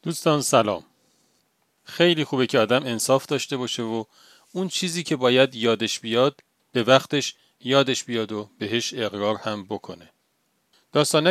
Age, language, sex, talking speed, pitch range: 40-59, Persian, male, 140 wpm, 115-150 Hz